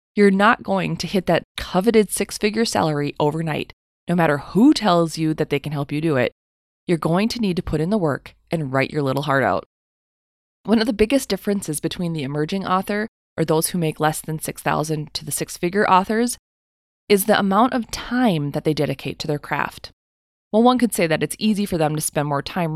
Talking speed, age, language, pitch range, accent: 215 wpm, 20-39, English, 150-210 Hz, American